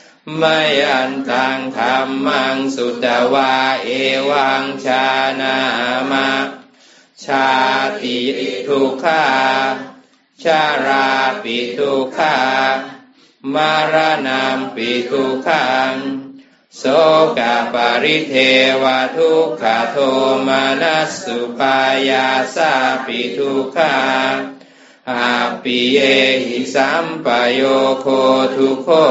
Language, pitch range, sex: English, 130-135 Hz, male